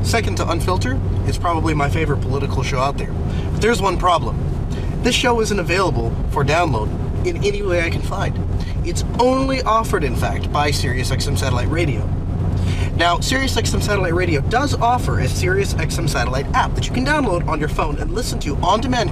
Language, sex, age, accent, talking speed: English, male, 30-49, American, 190 wpm